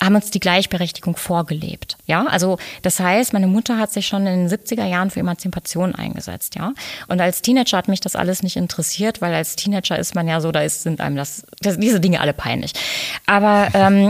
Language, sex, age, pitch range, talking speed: German, female, 20-39, 175-205 Hz, 210 wpm